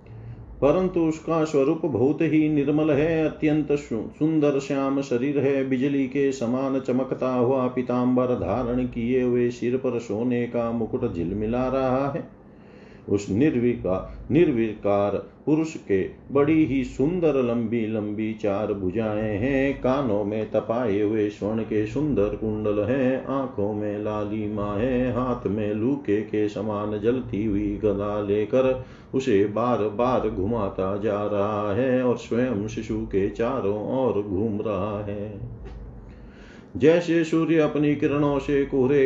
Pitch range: 105-130 Hz